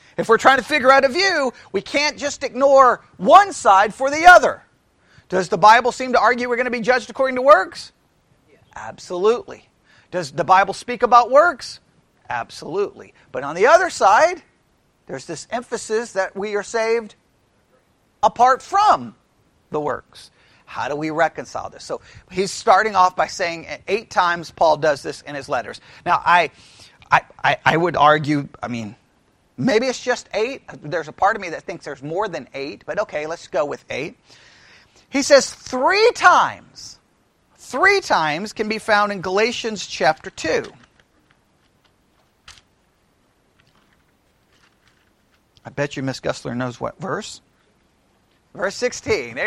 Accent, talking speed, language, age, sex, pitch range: American, 155 wpm, English, 40-59, male, 190-275 Hz